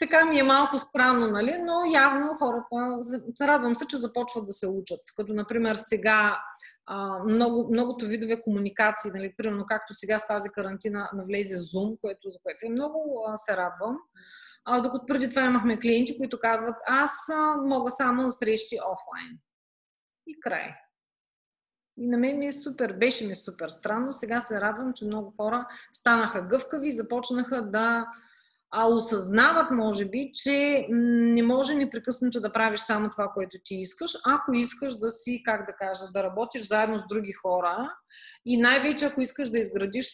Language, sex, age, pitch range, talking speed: Bulgarian, female, 30-49, 210-260 Hz, 165 wpm